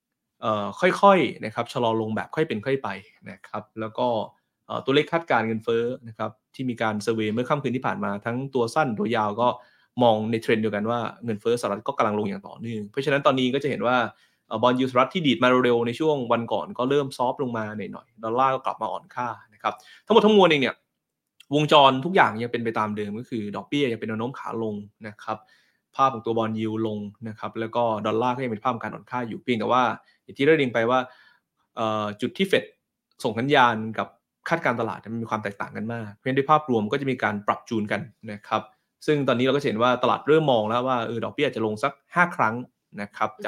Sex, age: male, 20-39